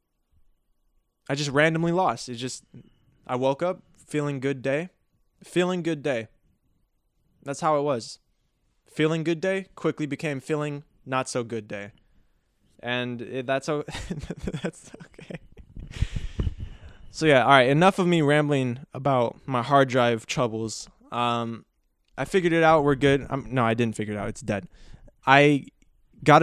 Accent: American